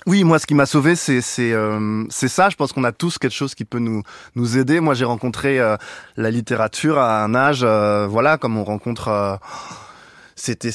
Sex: male